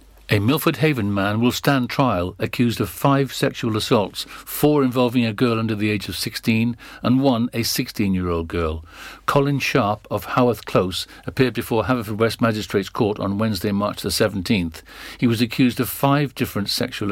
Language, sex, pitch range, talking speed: English, male, 100-125 Hz, 170 wpm